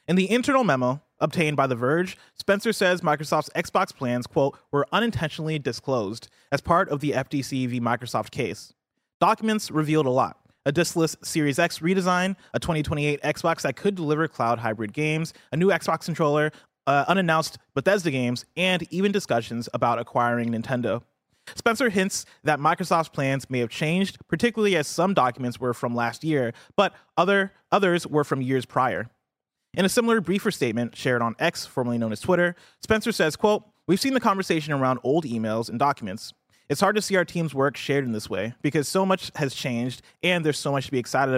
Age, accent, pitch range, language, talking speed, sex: 30-49, American, 125-175 Hz, English, 185 wpm, male